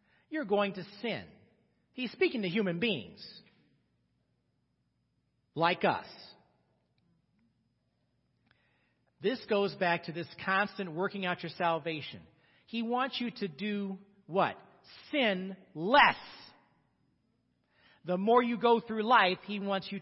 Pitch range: 175-240 Hz